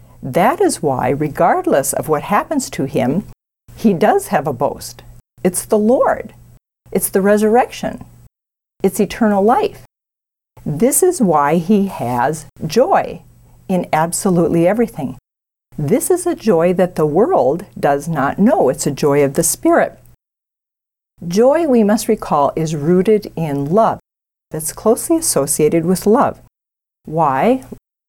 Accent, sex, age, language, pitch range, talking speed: American, female, 50-69, English, 155-225 Hz, 130 wpm